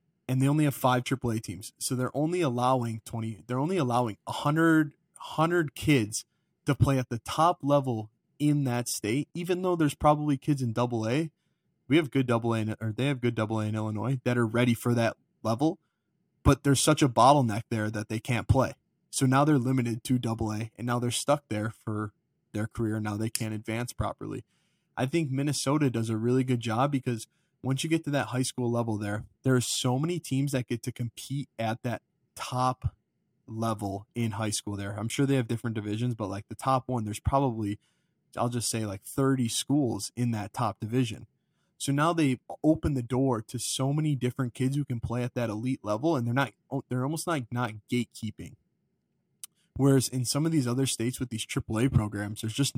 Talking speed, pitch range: 205 wpm, 115-140 Hz